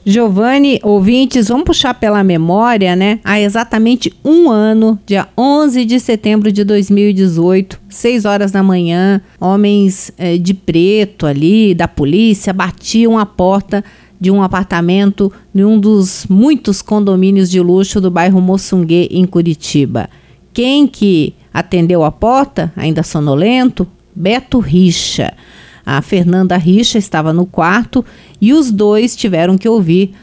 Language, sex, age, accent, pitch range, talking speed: Portuguese, female, 50-69, Brazilian, 180-220 Hz, 135 wpm